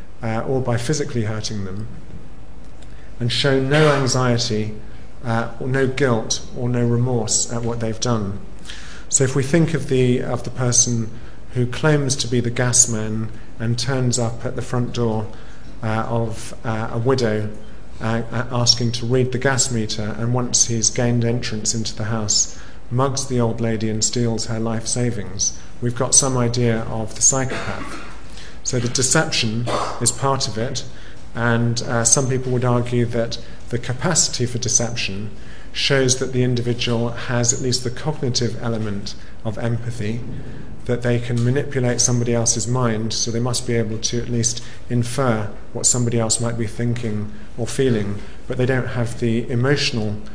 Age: 40-59